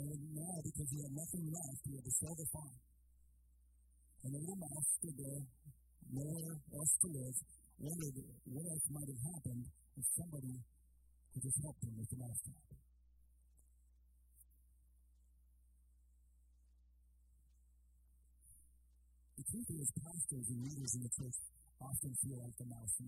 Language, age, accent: English, 50-69, American